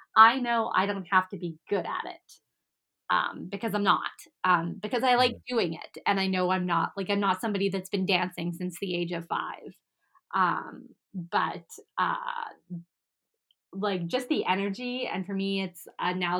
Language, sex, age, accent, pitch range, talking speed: English, female, 20-39, American, 175-210 Hz, 185 wpm